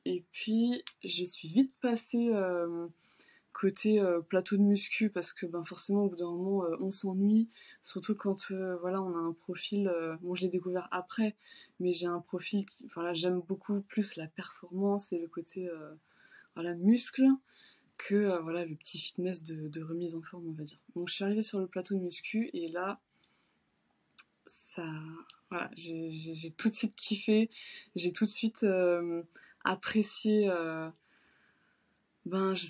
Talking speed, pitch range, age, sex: 180 wpm, 175-220 Hz, 20-39, female